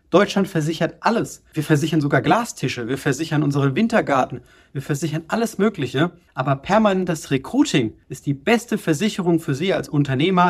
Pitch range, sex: 140-170 Hz, male